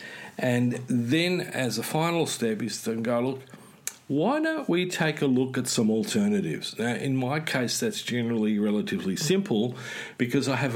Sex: male